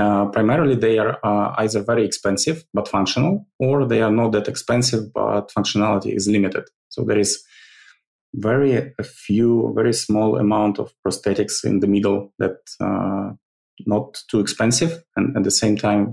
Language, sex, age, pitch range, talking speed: English, male, 20-39, 100-120 Hz, 160 wpm